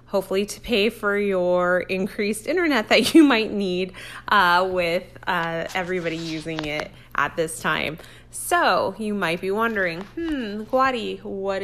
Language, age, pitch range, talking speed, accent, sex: English, 20-39, 170-220 Hz, 145 wpm, American, female